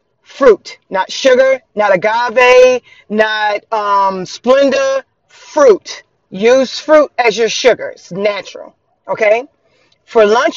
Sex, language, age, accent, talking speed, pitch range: female, English, 30-49, American, 110 wpm, 220-300 Hz